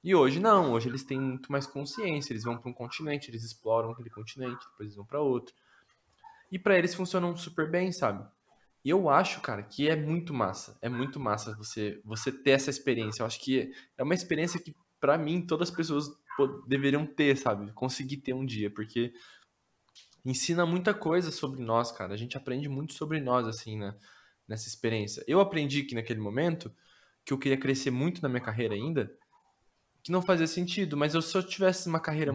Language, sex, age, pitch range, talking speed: Portuguese, male, 20-39, 115-155 Hz, 195 wpm